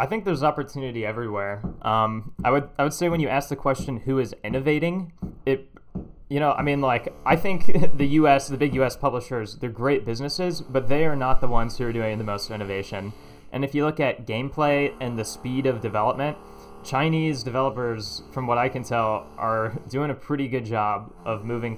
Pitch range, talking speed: 110-135 Hz, 205 wpm